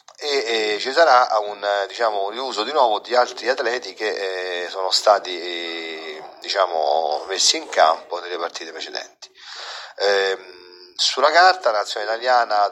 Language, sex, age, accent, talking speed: Italian, male, 40-59, native, 135 wpm